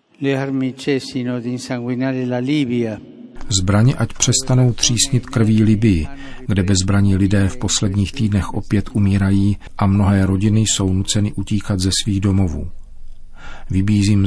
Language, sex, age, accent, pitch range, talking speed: Czech, male, 50-69, native, 95-105 Hz, 100 wpm